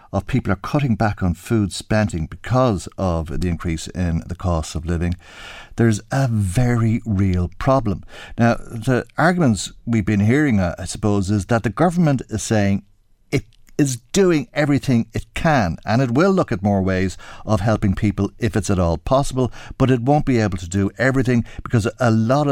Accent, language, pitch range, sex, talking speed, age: Irish, English, 90-115 Hz, male, 180 wpm, 60-79